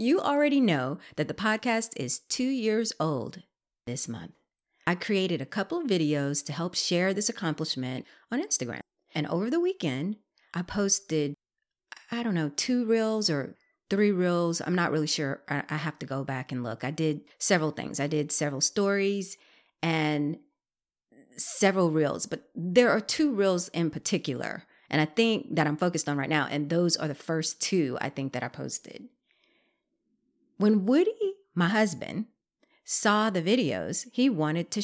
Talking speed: 170 wpm